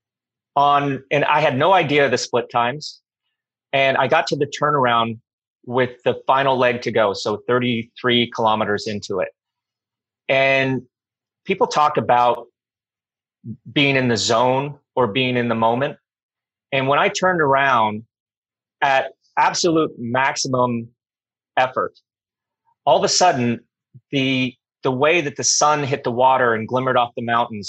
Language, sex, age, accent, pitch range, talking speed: English, male, 30-49, American, 115-140 Hz, 145 wpm